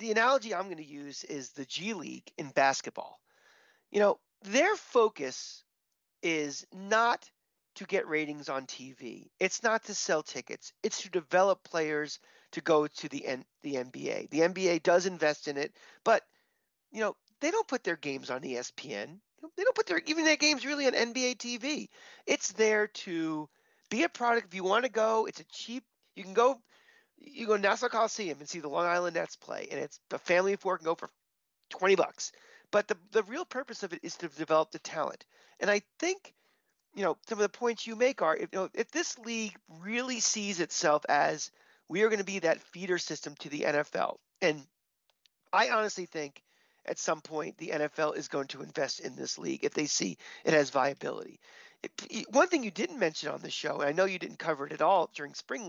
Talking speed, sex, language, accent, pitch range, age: 210 wpm, male, English, American, 160-255 Hz, 40-59